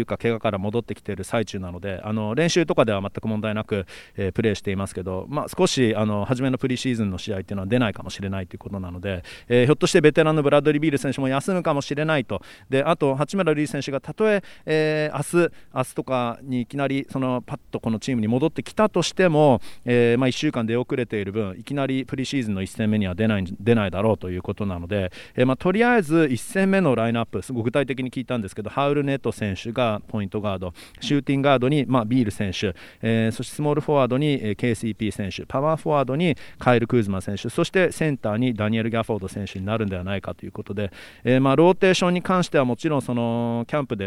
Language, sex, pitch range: Japanese, male, 105-140 Hz